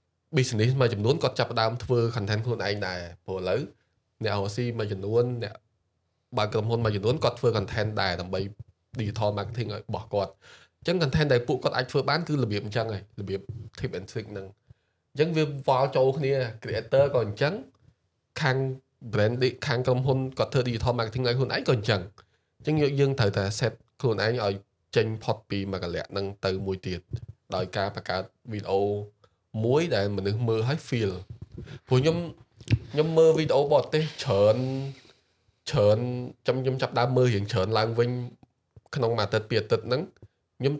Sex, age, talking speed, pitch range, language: male, 20-39, 125 wpm, 105-130 Hz, English